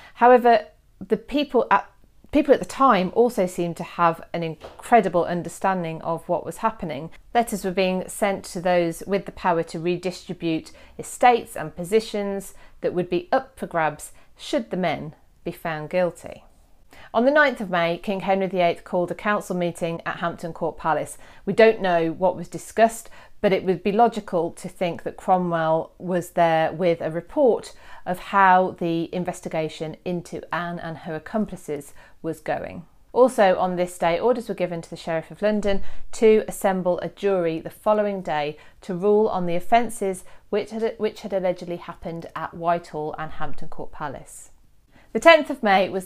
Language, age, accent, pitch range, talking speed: English, 40-59, British, 170-205 Hz, 170 wpm